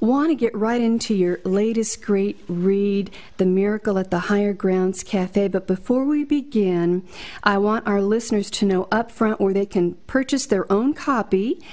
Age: 50-69